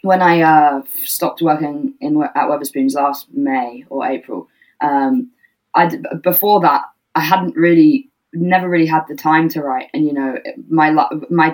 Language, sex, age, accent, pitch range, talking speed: English, female, 10-29, British, 145-180 Hz, 155 wpm